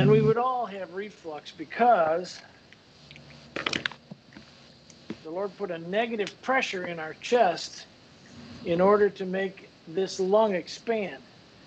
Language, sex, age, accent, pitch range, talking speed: English, male, 50-69, American, 180-215 Hz, 120 wpm